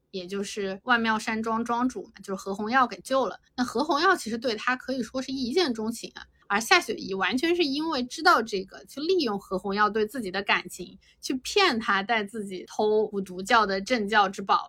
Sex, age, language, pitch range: female, 20-39, Chinese, 200-255 Hz